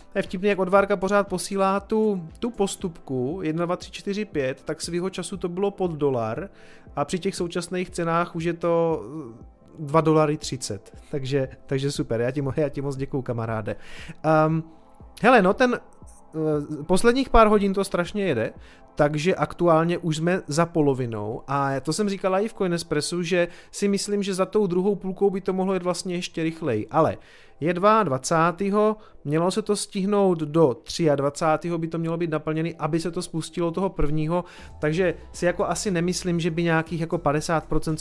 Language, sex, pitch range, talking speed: Czech, male, 150-185 Hz, 175 wpm